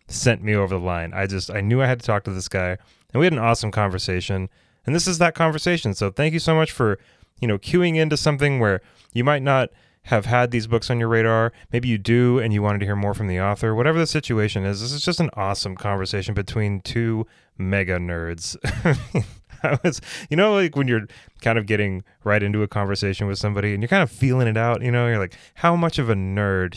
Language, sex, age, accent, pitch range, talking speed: English, male, 20-39, American, 95-125 Hz, 240 wpm